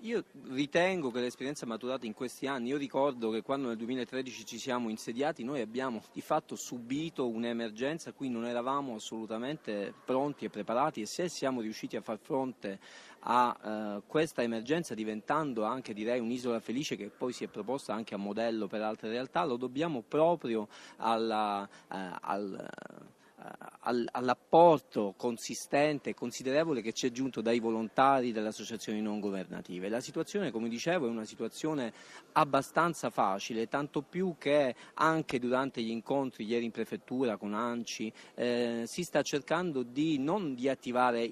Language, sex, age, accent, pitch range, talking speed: Italian, male, 30-49, native, 115-145 Hz, 155 wpm